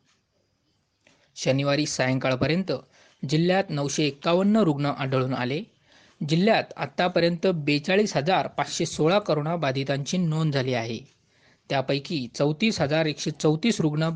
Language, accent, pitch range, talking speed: Marathi, native, 135-170 Hz, 95 wpm